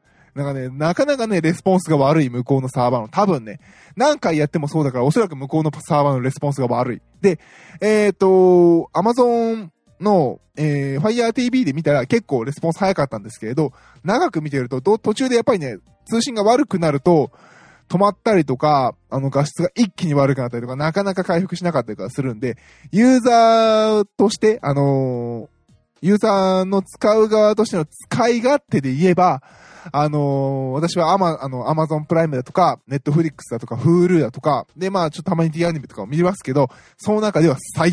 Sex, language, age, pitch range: male, Japanese, 20-39, 140-205 Hz